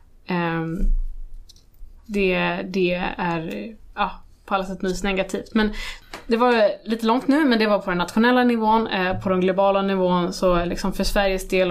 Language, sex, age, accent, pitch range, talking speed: Swedish, female, 20-39, native, 175-195 Hz, 150 wpm